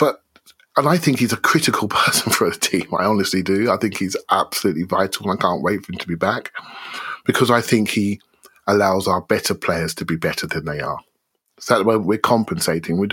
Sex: male